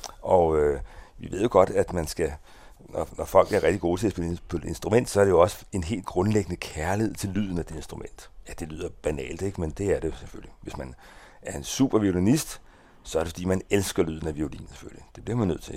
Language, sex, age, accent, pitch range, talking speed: Danish, male, 60-79, native, 85-105 Hz, 240 wpm